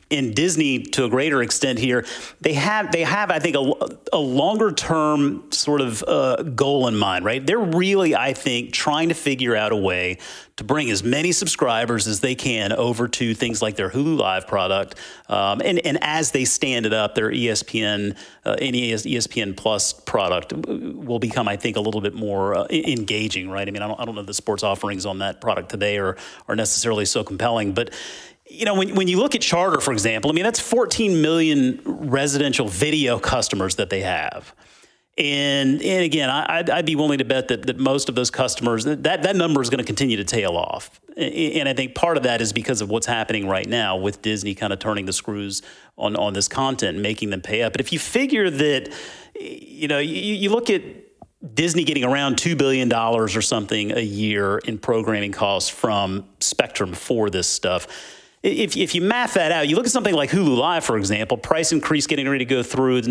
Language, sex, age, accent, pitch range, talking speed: English, male, 40-59, American, 105-150 Hz, 210 wpm